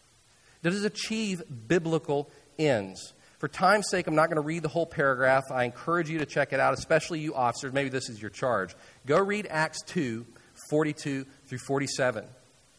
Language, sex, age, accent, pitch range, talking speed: English, male, 40-59, American, 145-215 Hz, 175 wpm